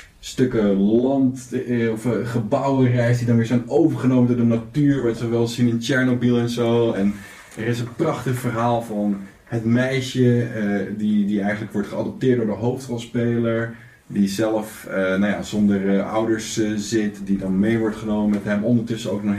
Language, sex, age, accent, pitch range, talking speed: Dutch, male, 20-39, Dutch, 105-130 Hz, 185 wpm